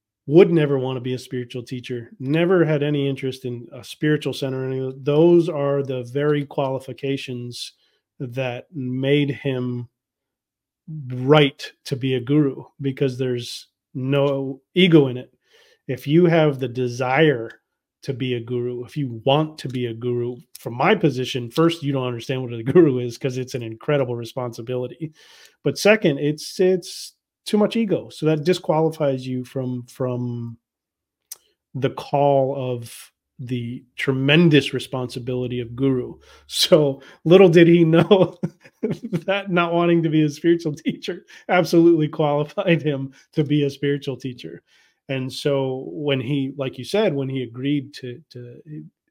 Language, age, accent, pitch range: English, 30-49, American, 125-155 Hz